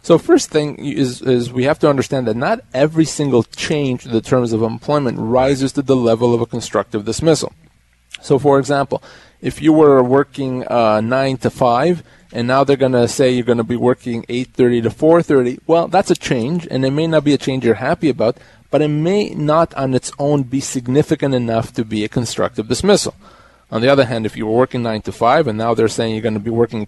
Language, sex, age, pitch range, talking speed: English, male, 30-49, 120-150 Hz, 225 wpm